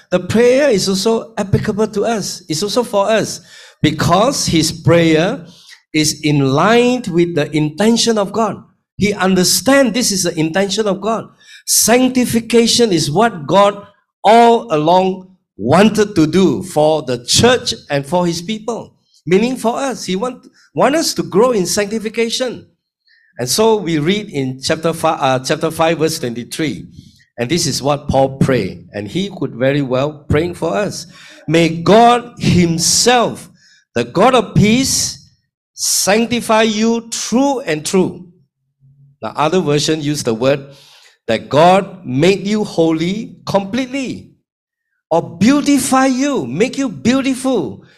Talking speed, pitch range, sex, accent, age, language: 140 wpm, 155-225 Hz, male, Malaysian, 50-69, English